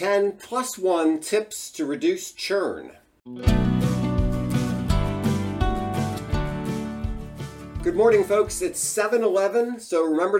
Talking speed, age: 80 wpm, 40-59